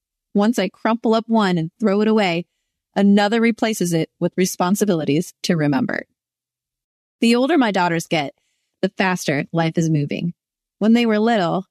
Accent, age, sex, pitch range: American, 30-49, female, 175-215 Hz